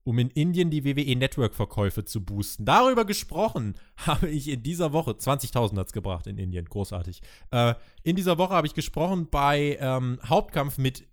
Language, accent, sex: German, German, male